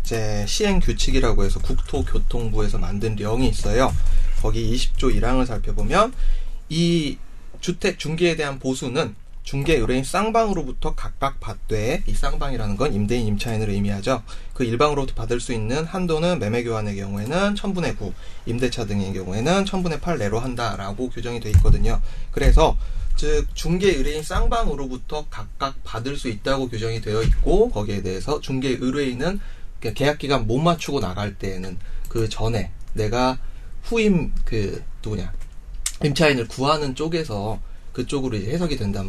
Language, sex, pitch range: Korean, male, 105-150 Hz